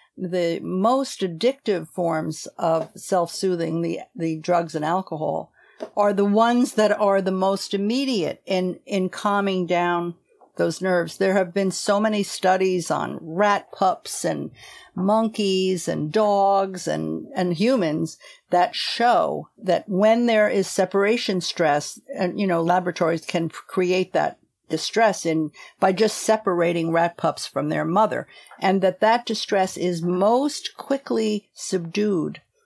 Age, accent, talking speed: 50-69, American, 135 wpm